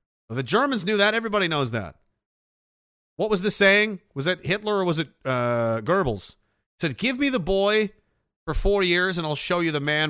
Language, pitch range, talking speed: English, 130-175 Hz, 200 wpm